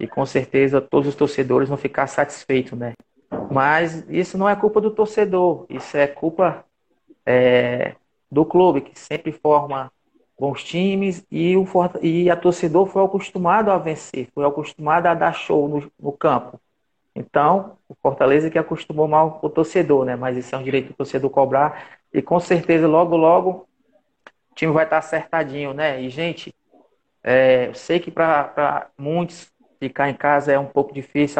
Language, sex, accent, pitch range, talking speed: Portuguese, male, Brazilian, 140-165 Hz, 160 wpm